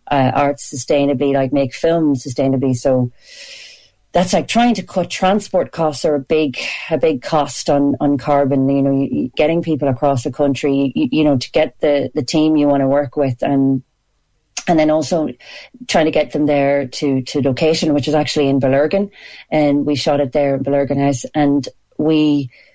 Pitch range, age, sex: 135-155 Hz, 40-59, female